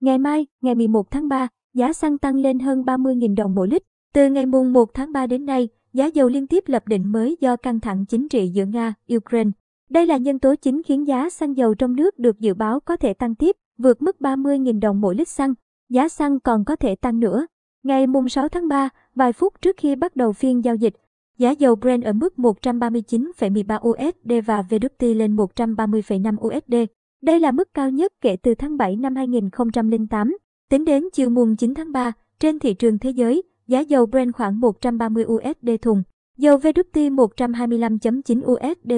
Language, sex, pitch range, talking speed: Vietnamese, male, 225-275 Hz, 200 wpm